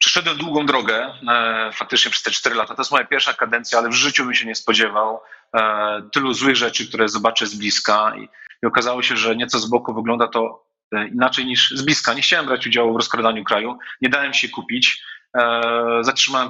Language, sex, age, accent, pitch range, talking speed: Polish, male, 30-49, native, 115-130 Hz, 195 wpm